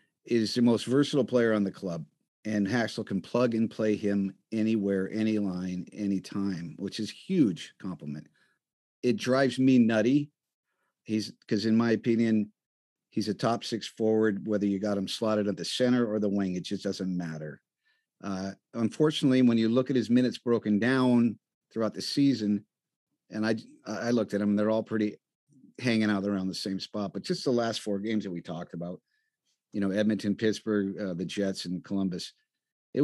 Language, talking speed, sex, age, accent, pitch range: English, 185 wpm, male, 50-69, American, 100-120 Hz